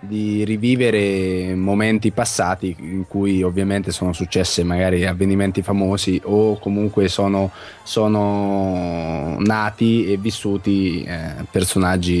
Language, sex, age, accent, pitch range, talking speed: Italian, male, 20-39, native, 90-110 Hz, 105 wpm